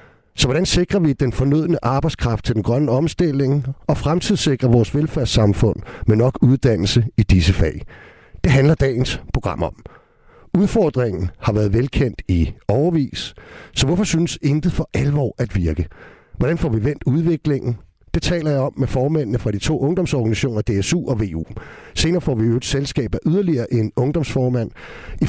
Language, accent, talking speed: Danish, native, 160 wpm